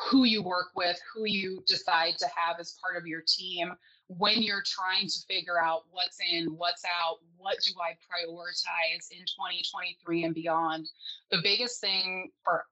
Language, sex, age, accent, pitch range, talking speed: English, female, 20-39, American, 170-200 Hz, 170 wpm